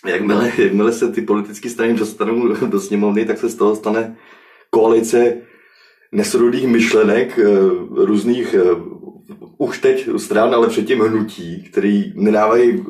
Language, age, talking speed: Czech, 20-39, 115 wpm